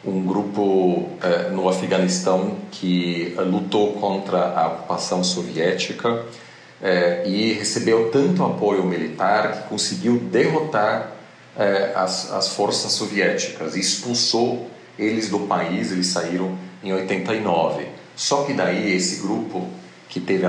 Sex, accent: male, Brazilian